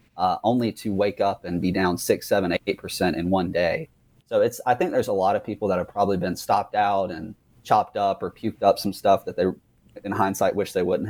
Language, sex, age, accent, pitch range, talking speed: English, male, 30-49, American, 90-105 Hz, 245 wpm